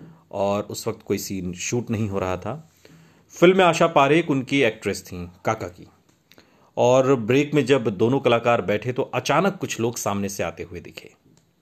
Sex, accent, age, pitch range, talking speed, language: male, native, 40-59, 100-125 Hz, 180 wpm, Hindi